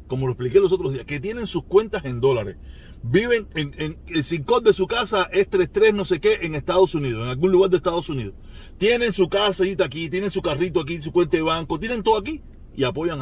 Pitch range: 125-190 Hz